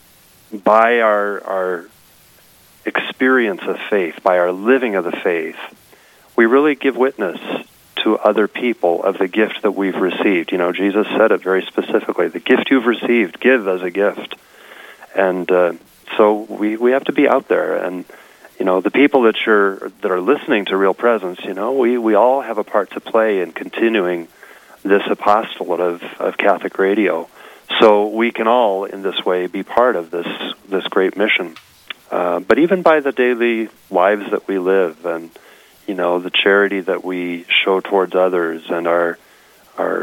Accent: American